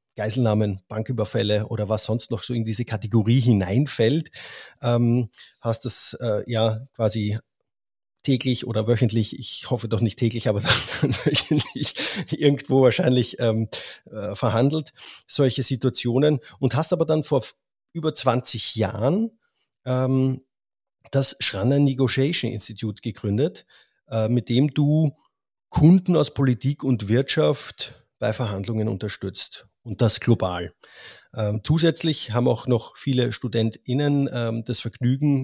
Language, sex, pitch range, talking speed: German, male, 115-140 Hz, 115 wpm